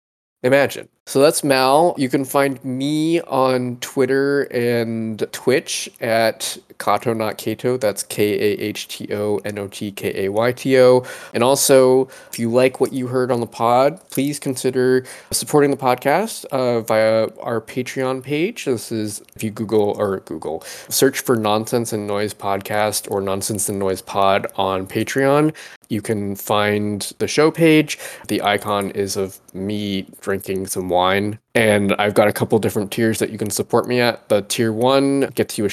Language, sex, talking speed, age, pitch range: English, male, 175 wpm, 20-39, 100-130 Hz